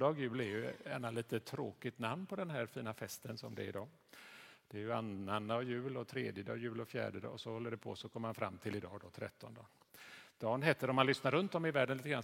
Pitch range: 110-140 Hz